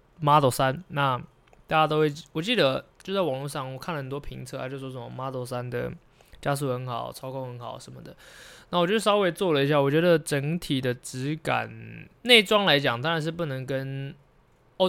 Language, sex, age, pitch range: Chinese, male, 20-39, 125-165 Hz